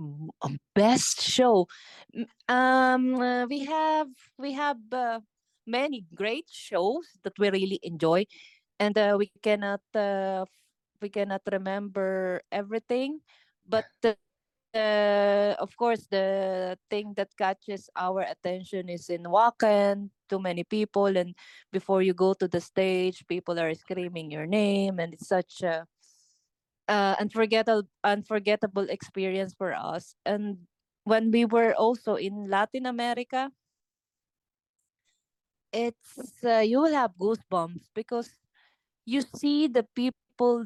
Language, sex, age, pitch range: English, female, 20-39, 185-225 Hz